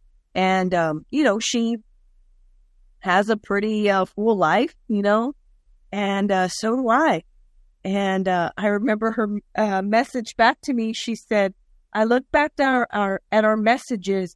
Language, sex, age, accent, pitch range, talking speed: English, female, 30-49, American, 190-225 Hz, 160 wpm